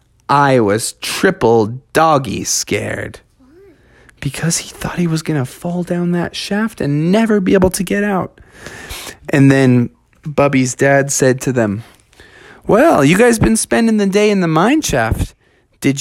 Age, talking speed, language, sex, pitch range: 20-39, 155 wpm, English, male, 130-210 Hz